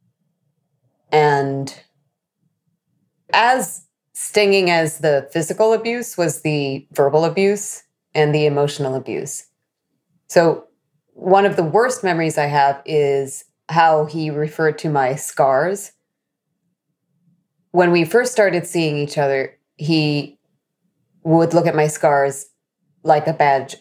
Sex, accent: female, American